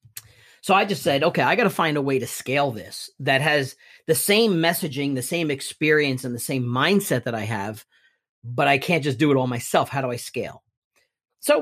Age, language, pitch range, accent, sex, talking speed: 40-59, English, 135-170 Hz, American, male, 215 wpm